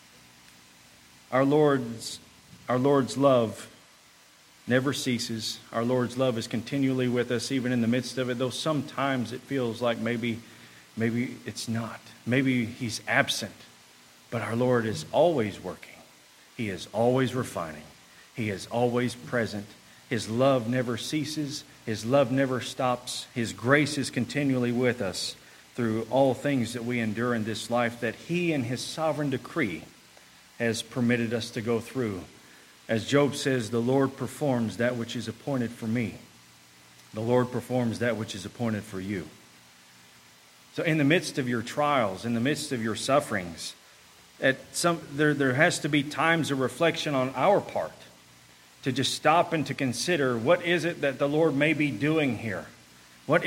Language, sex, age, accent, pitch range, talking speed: English, male, 40-59, American, 110-140 Hz, 165 wpm